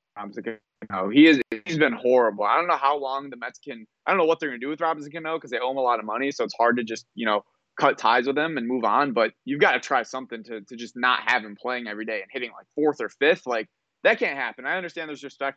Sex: male